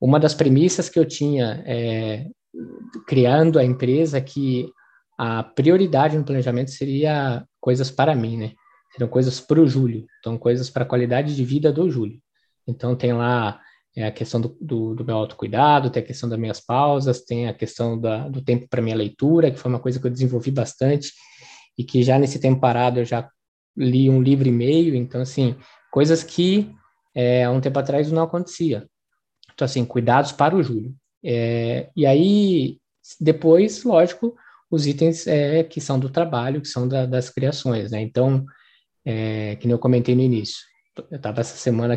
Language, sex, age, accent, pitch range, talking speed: Portuguese, male, 20-39, Brazilian, 120-155 Hz, 180 wpm